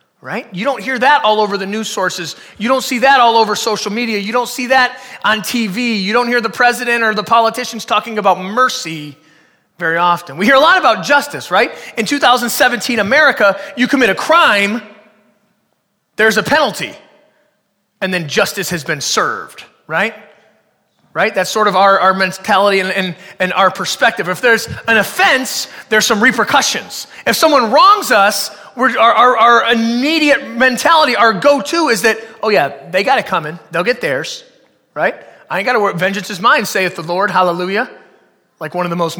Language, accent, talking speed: English, American, 185 wpm